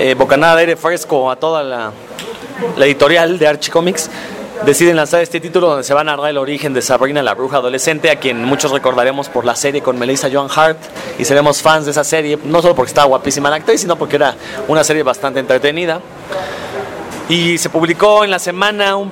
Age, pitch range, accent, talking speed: 30-49, 140-175 Hz, Mexican, 205 wpm